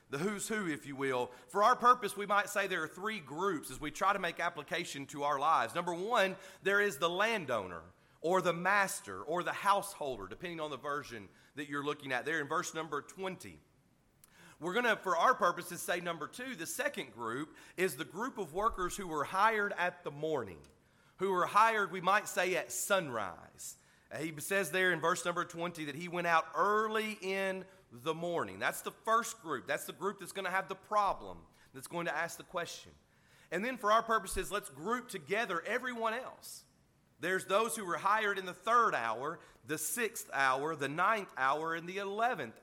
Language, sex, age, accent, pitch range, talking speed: English, male, 40-59, American, 160-200 Hz, 200 wpm